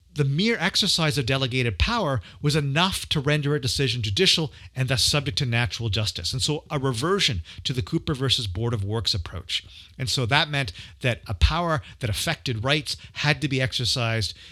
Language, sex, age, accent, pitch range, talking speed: English, male, 40-59, American, 105-145 Hz, 185 wpm